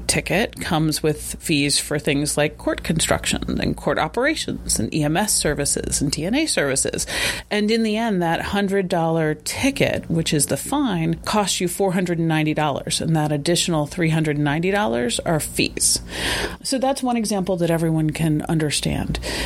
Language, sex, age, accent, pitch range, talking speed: English, female, 30-49, American, 150-190 Hz, 140 wpm